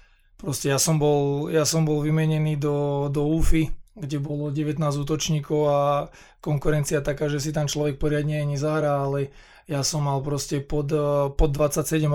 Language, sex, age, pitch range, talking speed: Slovak, male, 20-39, 145-155 Hz, 165 wpm